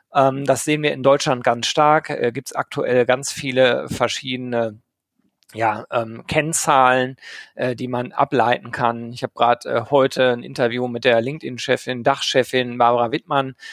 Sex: male